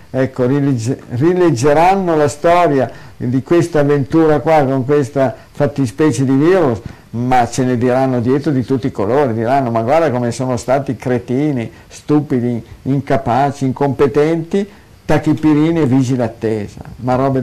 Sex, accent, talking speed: male, native, 130 wpm